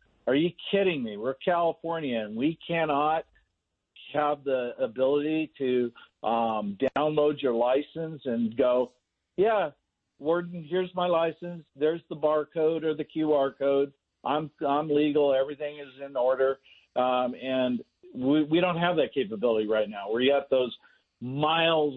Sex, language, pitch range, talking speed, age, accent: male, English, 120-150 Hz, 140 wpm, 50-69, American